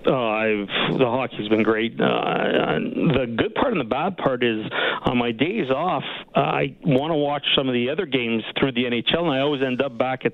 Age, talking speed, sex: 50-69, 230 wpm, male